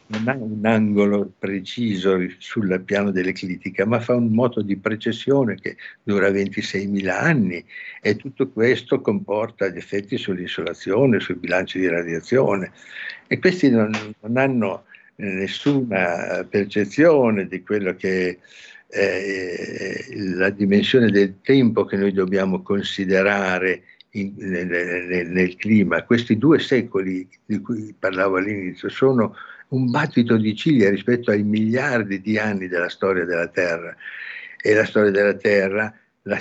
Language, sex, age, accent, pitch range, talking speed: Italian, male, 60-79, native, 95-110 Hz, 135 wpm